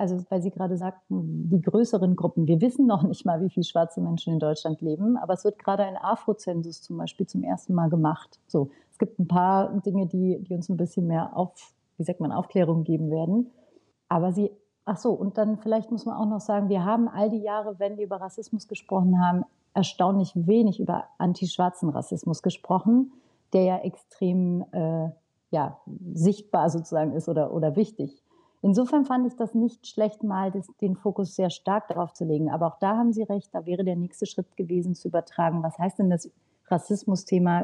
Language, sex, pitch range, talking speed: German, female, 170-205 Hz, 200 wpm